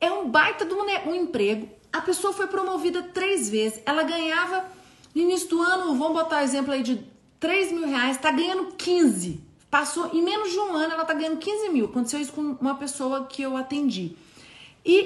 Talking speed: 205 wpm